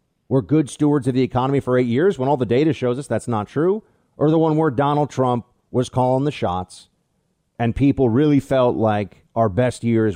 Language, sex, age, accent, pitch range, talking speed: English, male, 40-59, American, 105-140 Hz, 215 wpm